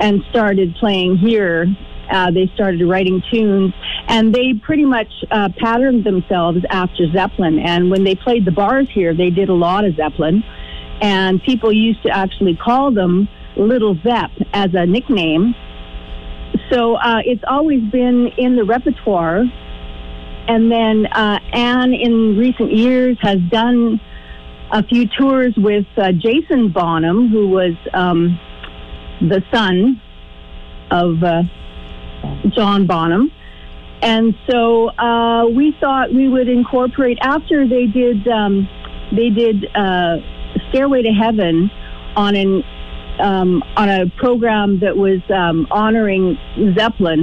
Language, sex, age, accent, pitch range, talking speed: English, female, 50-69, American, 175-230 Hz, 135 wpm